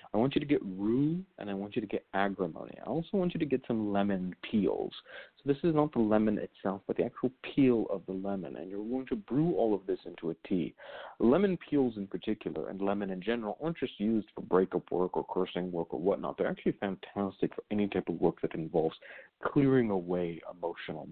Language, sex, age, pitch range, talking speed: English, male, 40-59, 95-125 Hz, 225 wpm